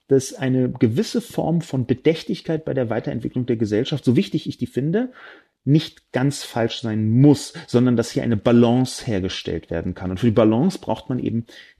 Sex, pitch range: male, 110-170 Hz